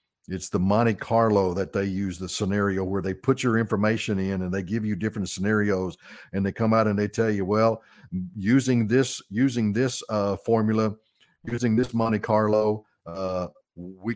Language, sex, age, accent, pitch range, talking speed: English, male, 50-69, American, 95-115 Hz, 180 wpm